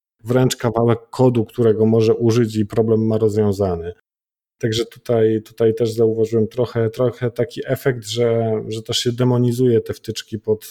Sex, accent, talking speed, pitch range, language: male, native, 150 wpm, 105-120 Hz, Polish